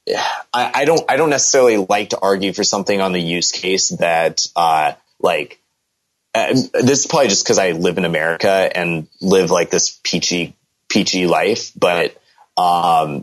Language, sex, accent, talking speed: English, male, American, 165 wpm